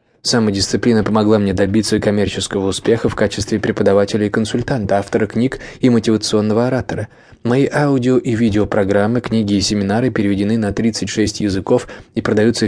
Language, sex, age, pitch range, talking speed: English, male, 20-39, 100-120 Hz, 140 wpm